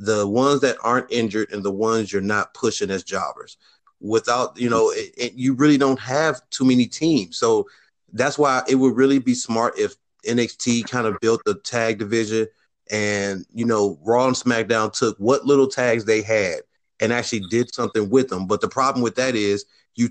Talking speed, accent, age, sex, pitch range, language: 195 wpm, American, 30-49, male, 110-130 Hz, English